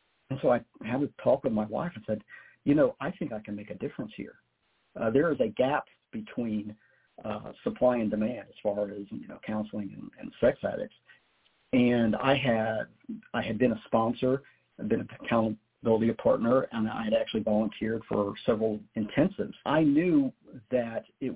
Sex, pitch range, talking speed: male, 110-130 Hz, 185 wpm